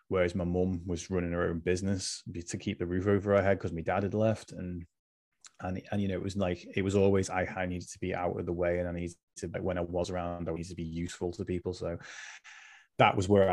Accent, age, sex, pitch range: British, 20-39, male, 90-100 Hz